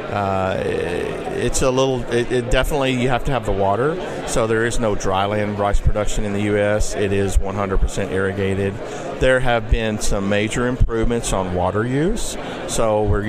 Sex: male